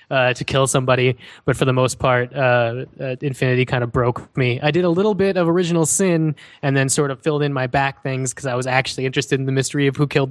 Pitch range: 125-145 Hz